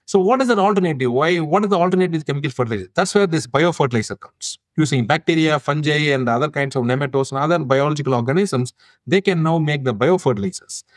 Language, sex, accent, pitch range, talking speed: English, male, Indian, 125-155 Hz, 190 wpm